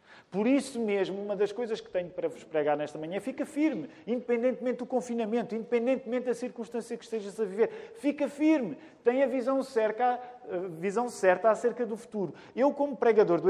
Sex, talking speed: male, 175 wpm